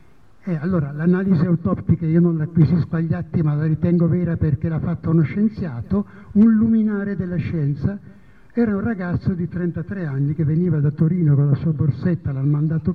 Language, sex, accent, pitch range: Italian, male, native, 140-185 Hz